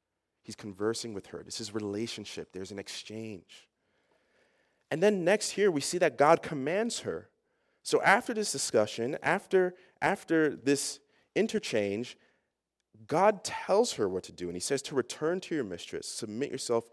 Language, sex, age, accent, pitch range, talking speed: English, male, 30-49, American, 110-170 Hz, 155 wpm